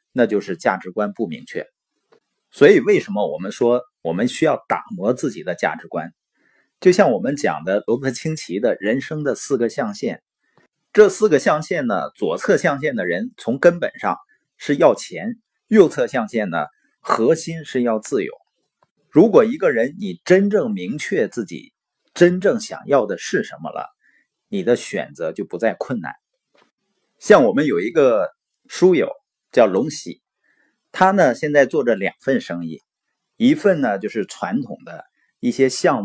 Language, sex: Chinese, male